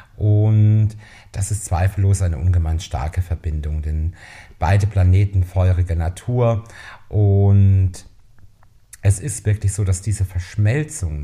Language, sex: German, male